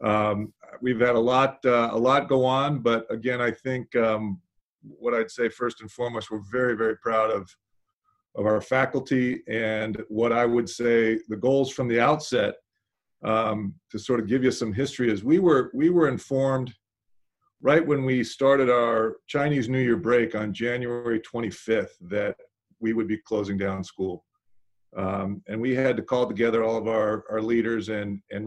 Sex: male